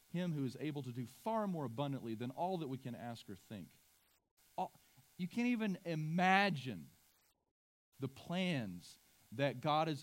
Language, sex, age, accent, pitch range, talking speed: English, male, 40-59, American, 90-135 Hz, 155 wpm